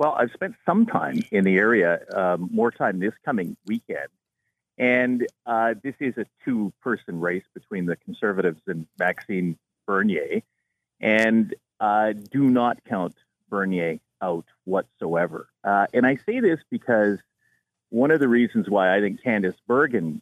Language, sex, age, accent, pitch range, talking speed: English, male, 40-59, American, 100-130 Hz, 150 wpm